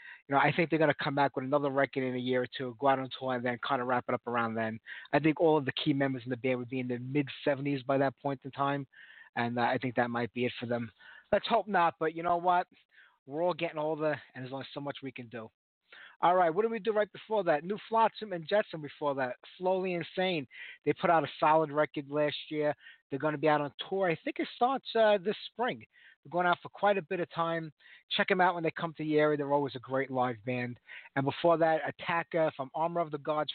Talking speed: 265 wpm